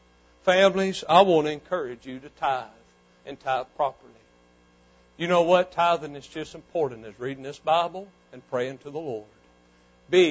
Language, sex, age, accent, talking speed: English, male, 60-79, American, 165 wpm